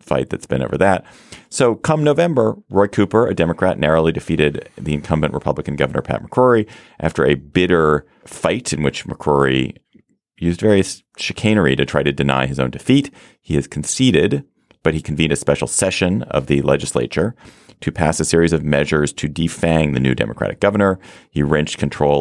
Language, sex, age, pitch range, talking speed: English, male, 30-49, 70-90 Hz, 175 wpm